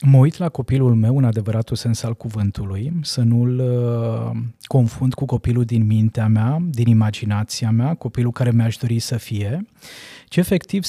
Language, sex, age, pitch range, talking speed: Romanian, male, 20-39, 120-135 Hz, 160 wpm